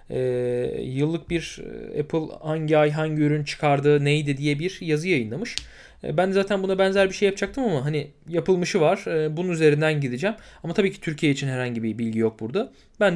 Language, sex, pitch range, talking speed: Turkish, male, 140-185 Hz, 180 wpm